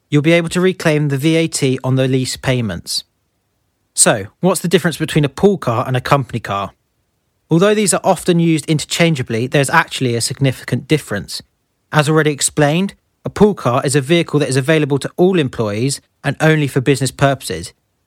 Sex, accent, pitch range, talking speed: male, British, 125-165 Hz, 180 wpm